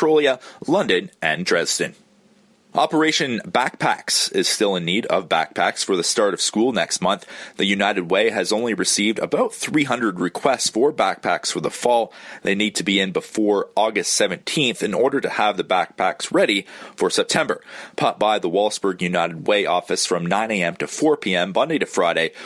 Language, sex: English, male